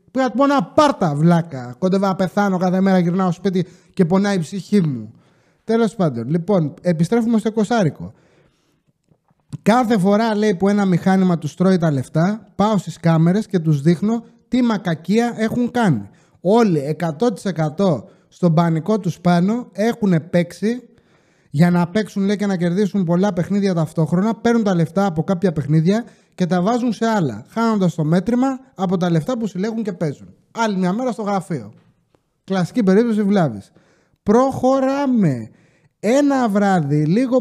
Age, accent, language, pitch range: 30-49, Greek, English, 165-220 Hz